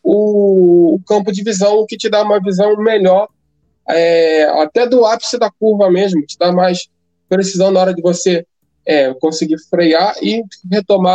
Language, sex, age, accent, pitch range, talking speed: Portuguese, male, 20-39, Brazilian, 180-215 Hz, 150 wpm